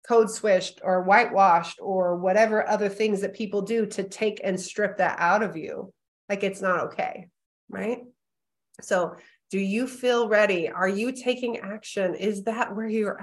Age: 30-49